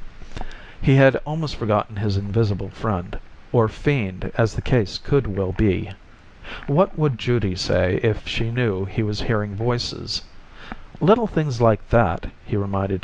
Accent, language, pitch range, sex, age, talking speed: American, English, 100-130 Hz, male, 50-69, 145 wpm